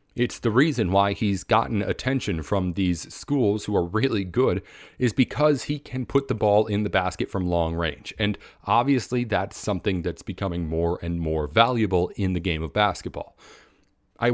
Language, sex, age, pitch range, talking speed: English, male, 40-59, 95-125 Hz, 180 wpm